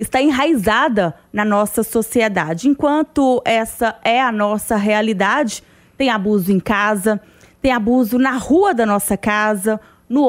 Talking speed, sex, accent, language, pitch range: 135 wpm, female, Brazilian, Portuguese, 205-245 Hz